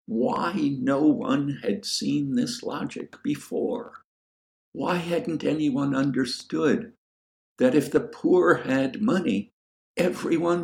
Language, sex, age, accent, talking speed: English, male, 60-79, American, 105 wpm